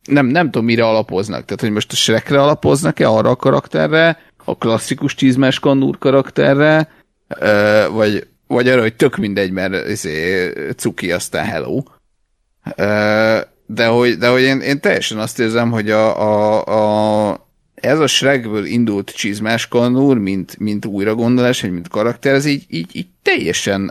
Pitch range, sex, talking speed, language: 95-125 Hz, male, 145 wpm, Hungarian